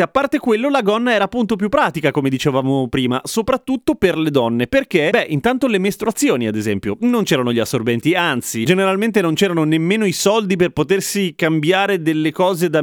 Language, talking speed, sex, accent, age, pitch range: Italian, 185 wpm, male, native, 30-49, 145-200 Hz